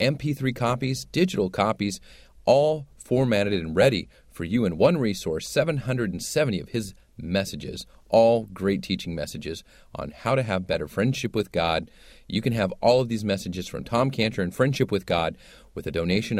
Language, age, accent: English, 30-49, American